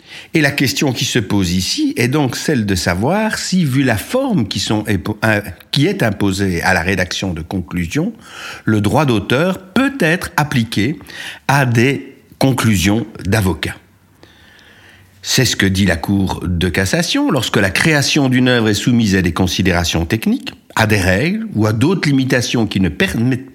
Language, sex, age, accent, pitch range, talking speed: French, male, 60-79, French, 90-120 Hz, 165 wpm